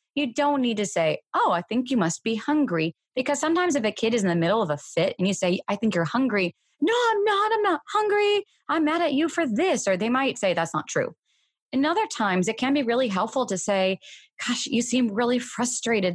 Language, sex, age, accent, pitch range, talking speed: English, female, 30-49, American, 160-235 Hz, 240 wpm